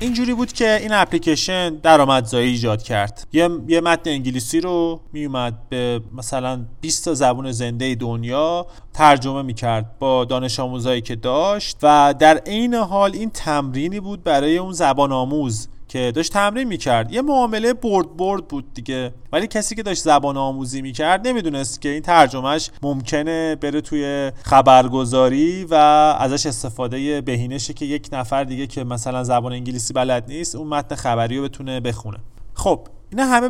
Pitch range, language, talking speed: 125-165 Hz, Persian, 160 wpm